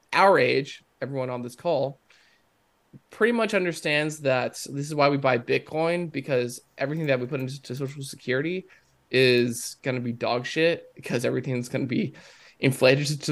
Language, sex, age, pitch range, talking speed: English, male, 20-39, 125-150 Hz, 165 wpm